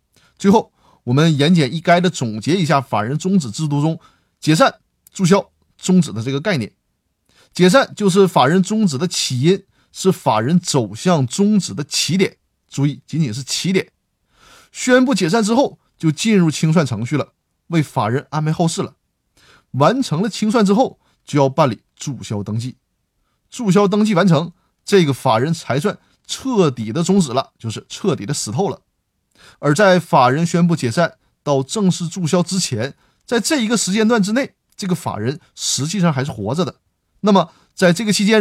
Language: Chinese